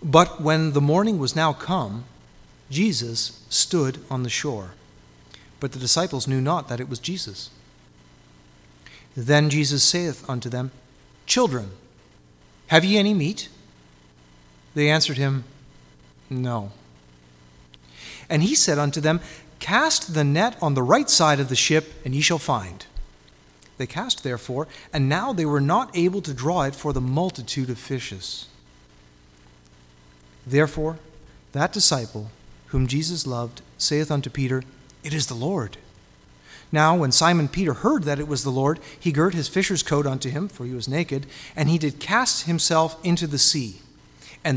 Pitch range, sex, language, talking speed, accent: 110-155 Hz, male, English, 155 wpm, American